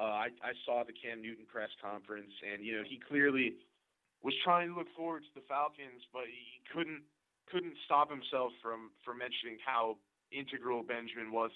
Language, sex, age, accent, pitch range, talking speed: English, male, 30-49, American, 110-135 Hz, 180 wpm